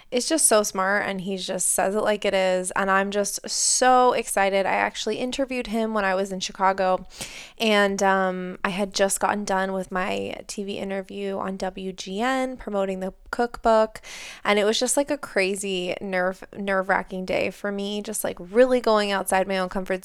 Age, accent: 20-39, American